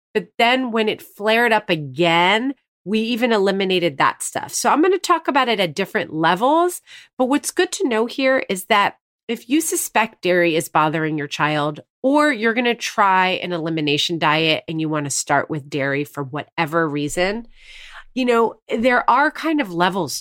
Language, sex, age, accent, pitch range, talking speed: English, female, 30-49, American, 170-255 Hz, 185 wpm